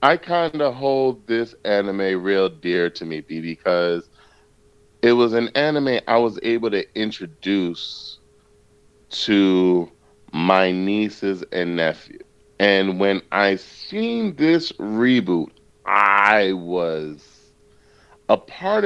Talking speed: 110 wpm